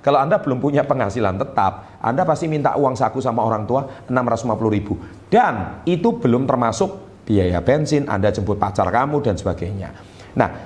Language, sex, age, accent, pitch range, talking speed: Indonesian, male, 40-59, native, 95-140 Hz, 165 wpm